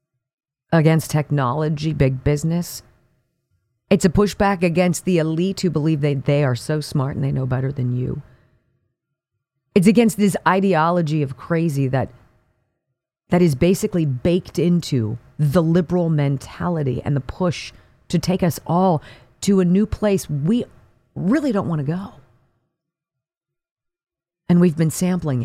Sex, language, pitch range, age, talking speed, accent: female, English, 125-175 Hz, 40-59, 140 wpm, American